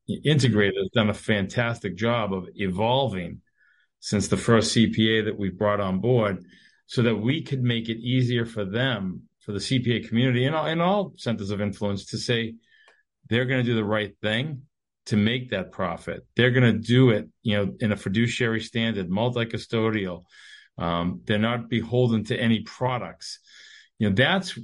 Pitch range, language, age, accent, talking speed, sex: 110-135 Hz, English, 50-69, American, 170 wpm, male